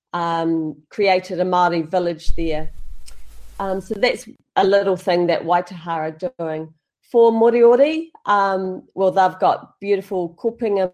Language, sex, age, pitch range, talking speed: English, female, 40-59, 170-195 Hz, 125 wpm